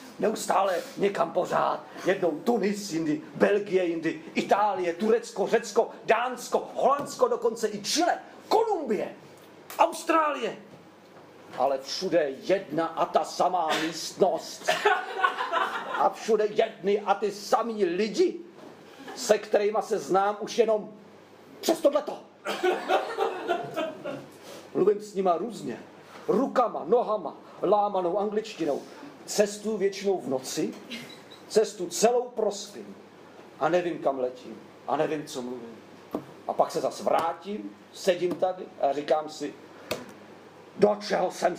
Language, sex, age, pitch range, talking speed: Czech, male, 40-59, 185-250 Hz, 110 wpm